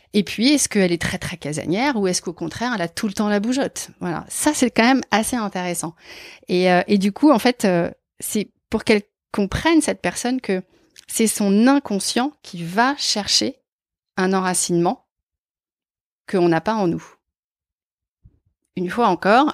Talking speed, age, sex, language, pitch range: 175 wpm, 30-49, female, French, 175-225 Hz